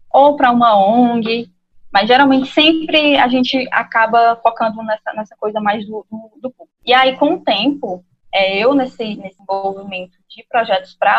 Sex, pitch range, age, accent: female, 195-245 Hz, 10-29, Brazilian